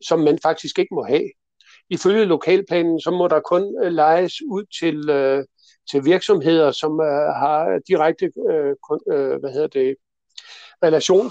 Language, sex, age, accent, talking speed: Danish, male, 60-79, native, 150 wpm